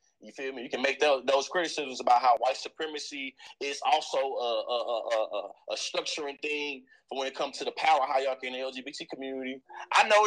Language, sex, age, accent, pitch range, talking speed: English, male, 30-49, American, 160-215 Hz, 210 wpm